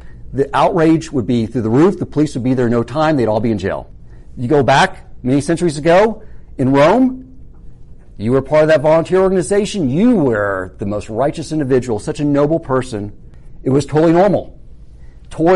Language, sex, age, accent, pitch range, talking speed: English, male, 40-59, American, 90-135 Hz, 195 wpm